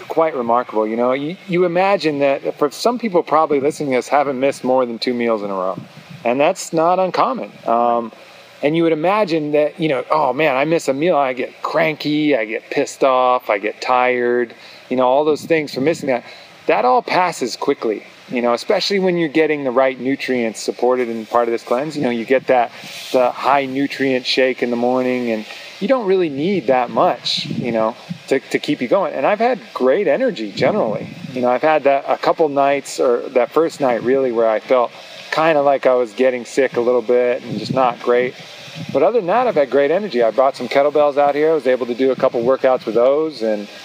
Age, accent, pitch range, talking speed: 30-49, American, 120-155 Hz, 225 wpm